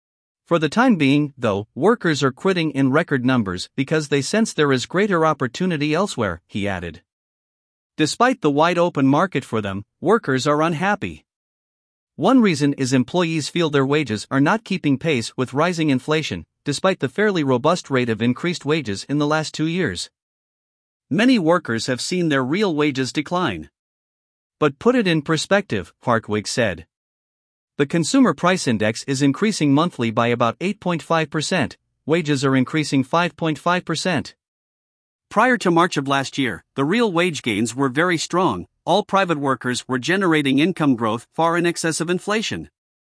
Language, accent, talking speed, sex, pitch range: English, American, 155 wpm, male, 130-175 Hz